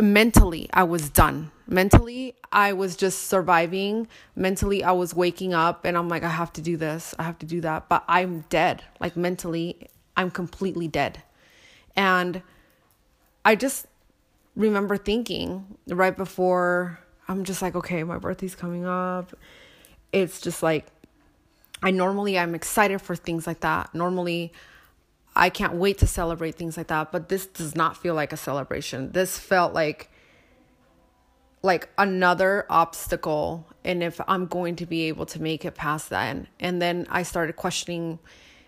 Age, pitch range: 20-39, 165-190 Hz